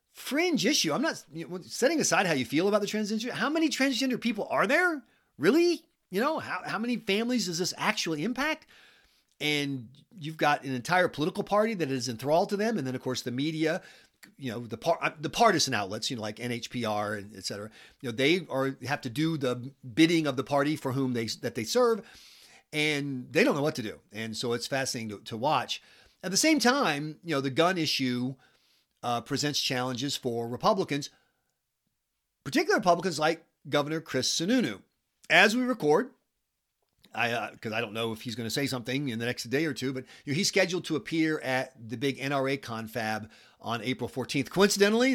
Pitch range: 125-185 Hz